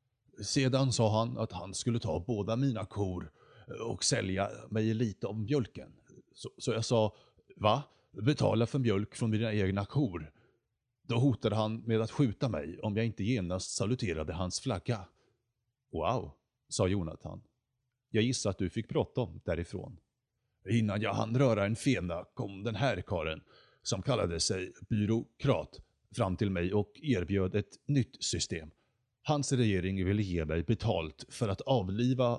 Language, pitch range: Swedish, 95-125 Hz